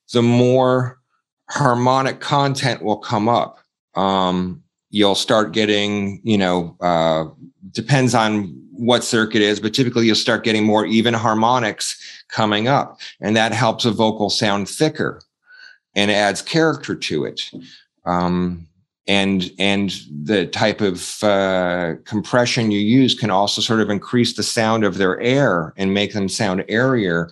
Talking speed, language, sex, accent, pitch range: 145 wpm, English, male, American, 95-115 Hz